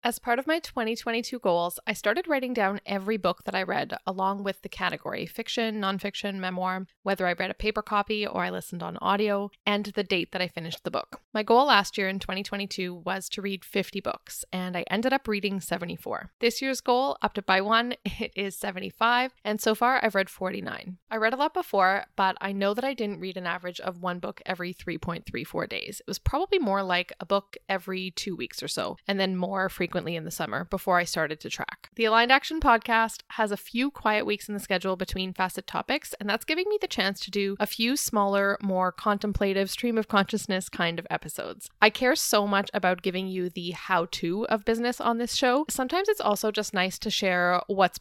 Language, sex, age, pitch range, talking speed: English, female, 20-39, 185-230 Hz, 220 wpm